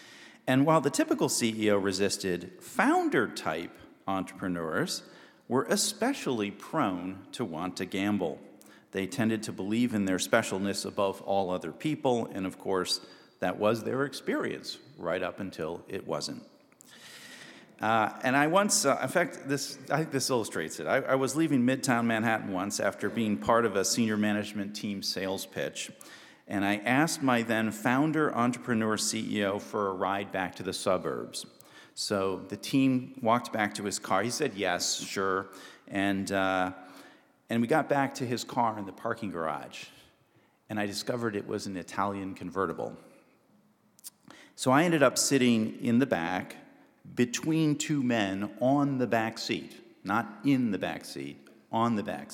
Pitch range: 100-130 Hz